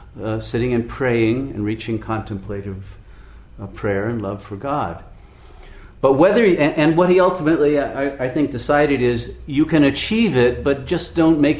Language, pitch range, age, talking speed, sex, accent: English, 110-140 Hz, 50-69, 170 wpm, male, American